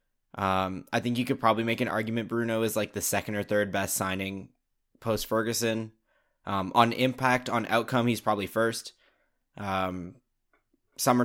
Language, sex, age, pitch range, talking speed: English, male, 10-29, 100-120 Hz, 155 wpm